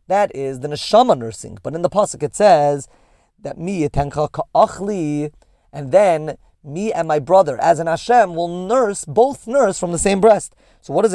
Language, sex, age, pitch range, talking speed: English, male, 30-49, 145-190 Hz, 180 wpm